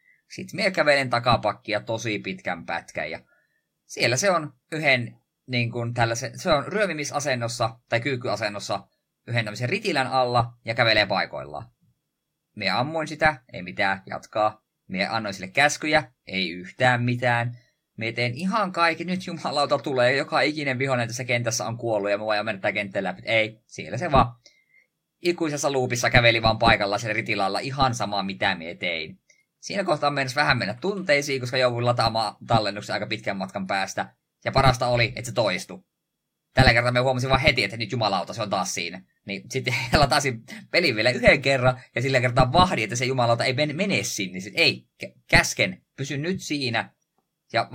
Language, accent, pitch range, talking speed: Finnish, native, 115-145 Hz, 165 wpm